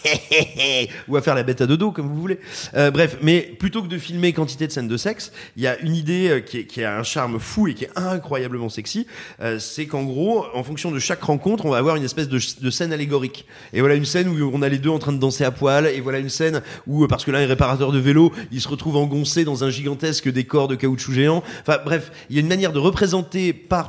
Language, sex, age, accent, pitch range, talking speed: French, male, 30-49, French, 135-170 Hz, 265 wpm